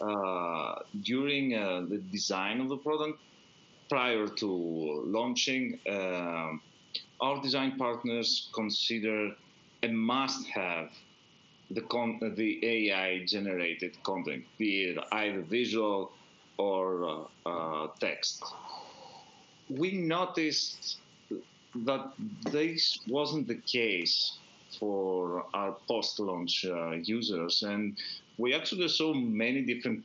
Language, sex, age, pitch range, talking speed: English, male, 40-59, 95-135 Hz, 95 wpm